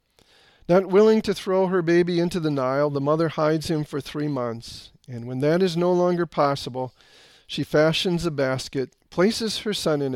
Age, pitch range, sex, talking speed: 40-59, 140-175 Hz, male, 185 wpm